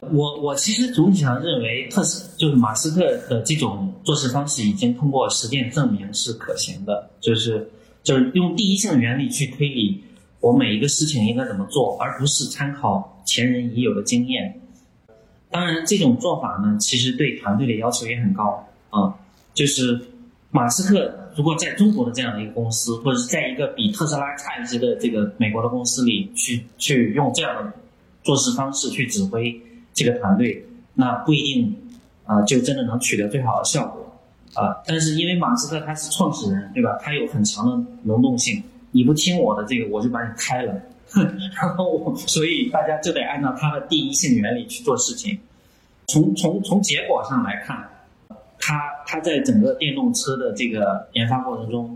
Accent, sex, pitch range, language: native, male, 120-195 Hz, Chinese